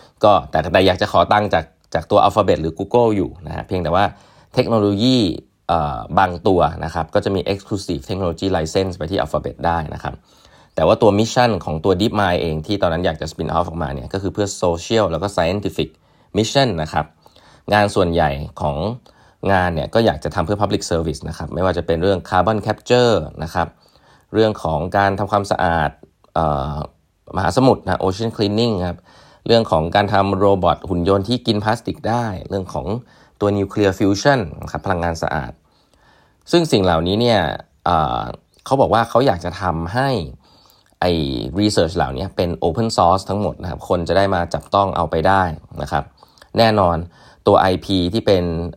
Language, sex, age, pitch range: Thai, male, 20-39, 85-105 Hz